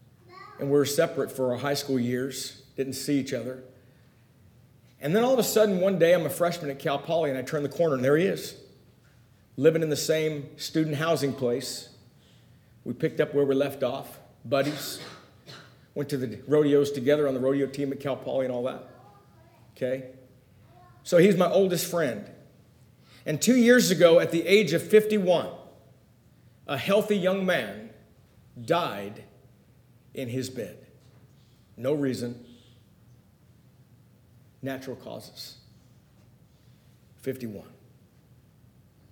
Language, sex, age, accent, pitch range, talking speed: English, male, 50-69, American, 120-150 Hz, 145 wpm